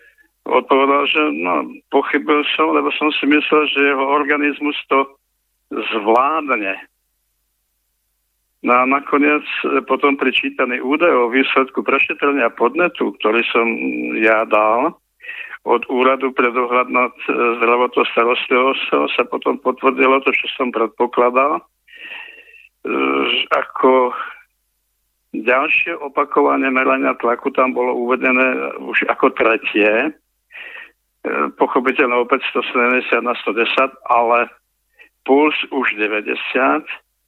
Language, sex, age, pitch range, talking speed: Slovak, male, 60-79, 120-145 Hz, 100 wpm